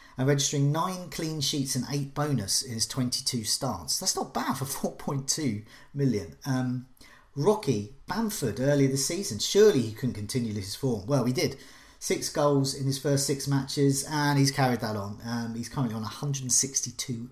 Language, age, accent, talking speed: English, 40-59, British, 175 wpm